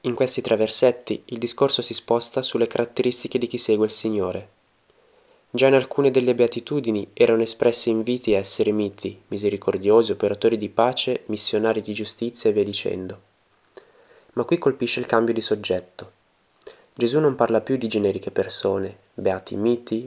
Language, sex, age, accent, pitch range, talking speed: Italian, male, 20-39, native, 105-135 Hz, 155 wpm